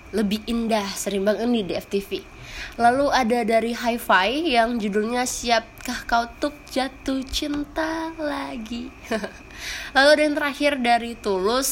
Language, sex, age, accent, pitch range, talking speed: Indonesian, female, 20-39, native, 205-265 Hz, 125 wpm